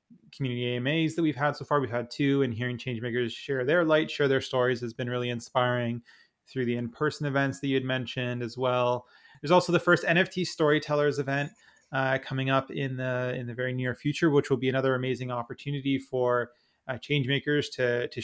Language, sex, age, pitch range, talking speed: English, male, 30-49, 125-140 Hz, 200 wpm